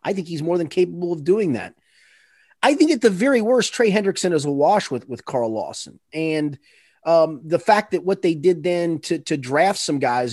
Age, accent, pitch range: 30-49, American, 140-200 Hz